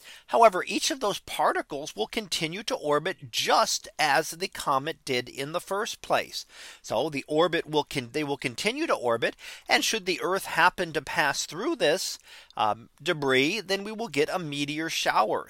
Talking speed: 180 wpm